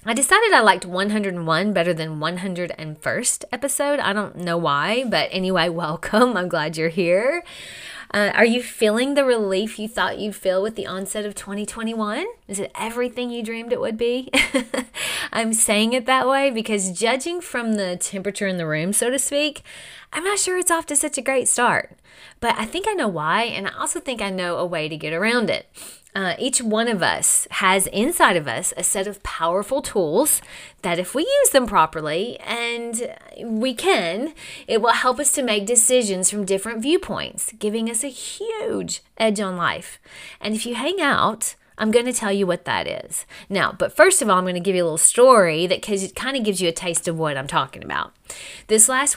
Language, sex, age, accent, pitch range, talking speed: English, female, 30-49, American, 185-260 Hz, 205 wpm